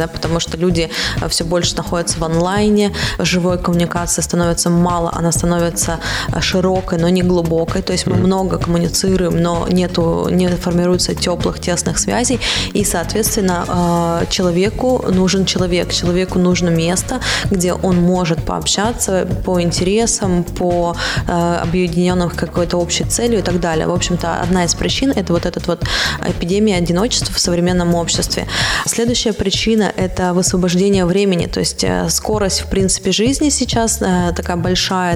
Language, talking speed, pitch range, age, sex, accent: Russian, 140 wpm, 170-185 Hz, 20-39, female, native